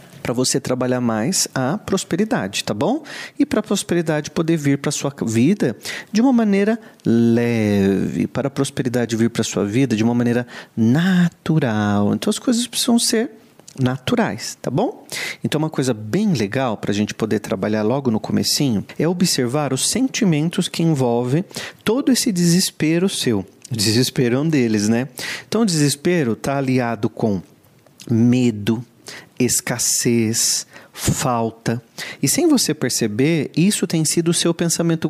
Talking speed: 150 wpm